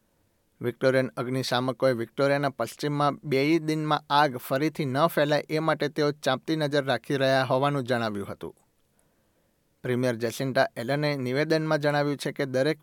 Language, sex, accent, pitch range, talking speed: Gujarati, male, native, 130-150 Hz, 130 wpm